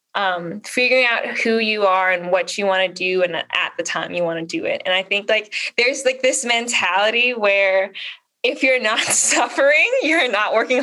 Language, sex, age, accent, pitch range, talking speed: English, female, 10-29, American, 195-260 Hz, 205 wpm